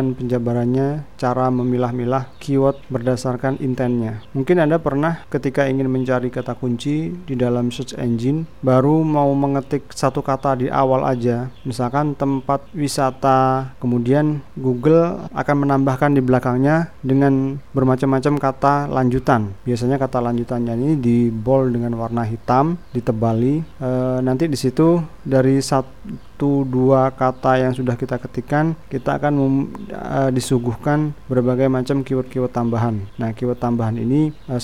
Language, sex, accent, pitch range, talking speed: Indonesian, male, native, 125-140 Hz, 125 wpm